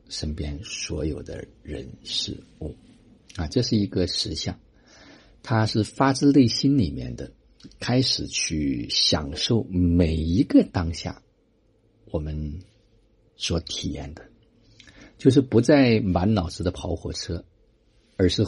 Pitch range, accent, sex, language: 85-110 Hz, native, male, Chinese